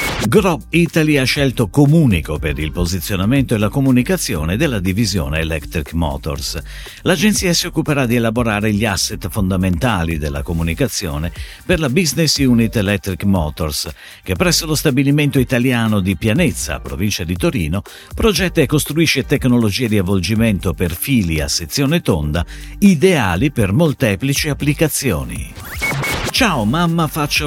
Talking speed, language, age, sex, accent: 130 wpm, Italian, 50-69, male, native